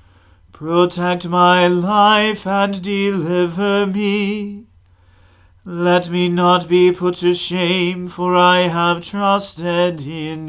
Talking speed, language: 105 wpm, English